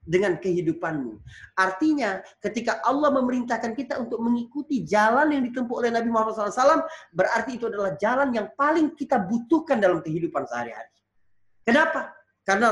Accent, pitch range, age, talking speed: native, 195-285 Hz, 30-49, 135 wpm